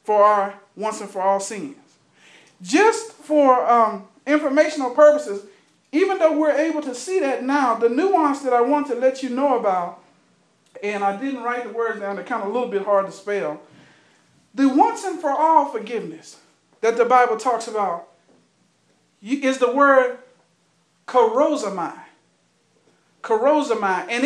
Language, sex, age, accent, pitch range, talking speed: English, male, 50-69, American, 225-300 Hz, 160 wpm